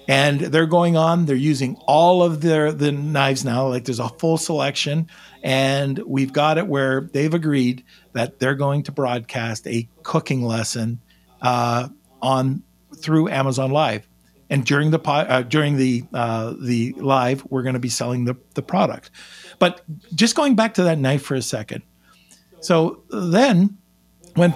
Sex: male